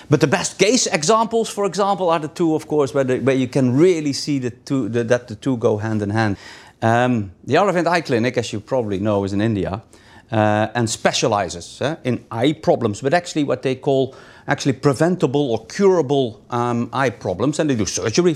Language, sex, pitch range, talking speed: English, male, 120-165 Hz, 195 wpm